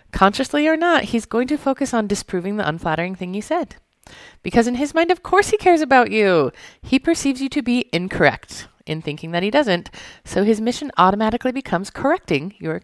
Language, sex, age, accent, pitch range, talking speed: English, female, 30-49, American, 165-260 Hz, 195 wpm